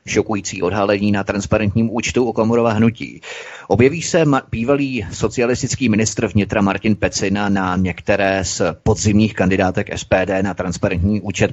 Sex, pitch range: male, 95-120 Hz